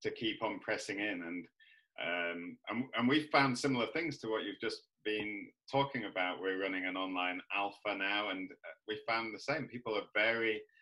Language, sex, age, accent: English, male, 30-49, British